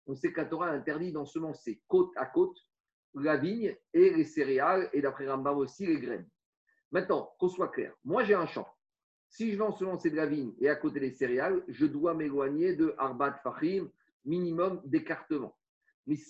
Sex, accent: male, French